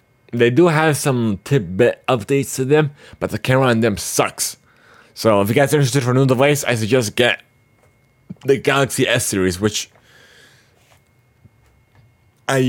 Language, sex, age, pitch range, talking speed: English, male, 30-49, 105-130 Hz, 155 wpm